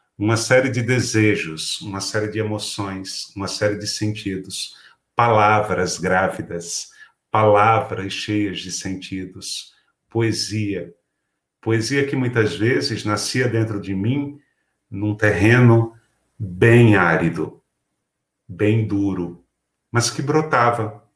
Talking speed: 100 wpm